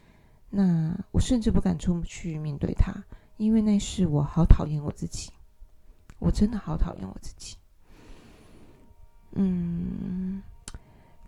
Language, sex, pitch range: Chinese, female, 170-210 Hz